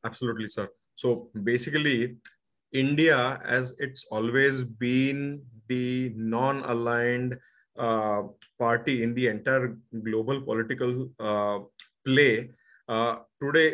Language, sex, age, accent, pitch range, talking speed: English, male, 30-49, Indian, 115-140 Hz, 90 wpm